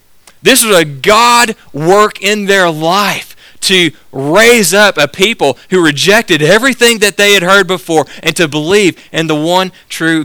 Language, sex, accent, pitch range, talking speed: English, male, American, 130-180 Hz, 165 wpm